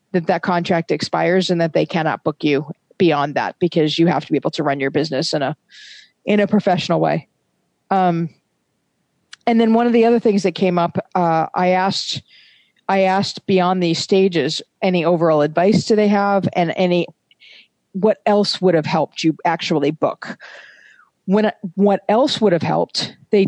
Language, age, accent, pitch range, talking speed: English, 40-59, American, 170-200 Hz, 180 wpm